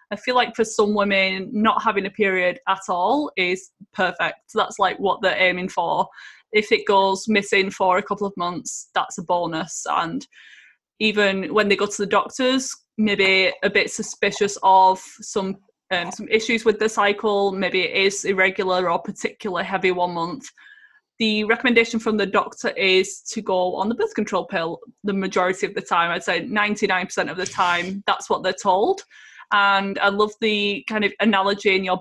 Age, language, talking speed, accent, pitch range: 20-39, English, 185 wpm, British, 190-215 Hz